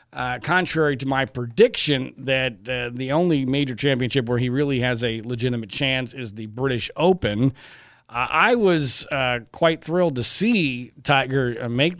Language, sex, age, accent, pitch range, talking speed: English, male, 40-59, American, 125-160 Hz, 160 wpm